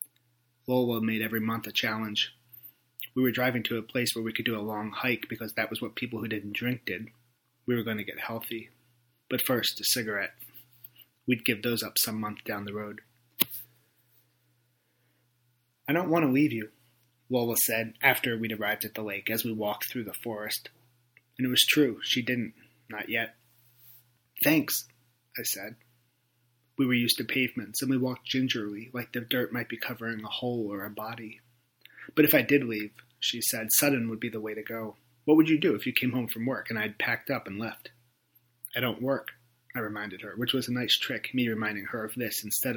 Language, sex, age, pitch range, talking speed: English, male, 30-49, 110-120 Hz, 205 wpm